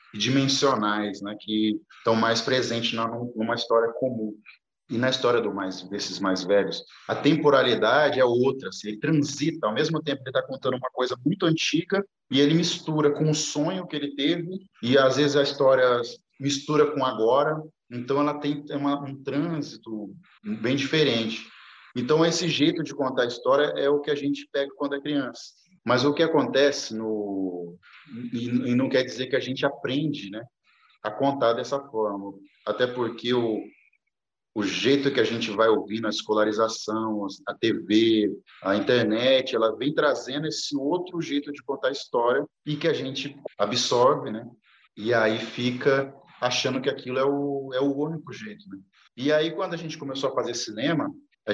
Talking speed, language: 175 wpm, Portuguese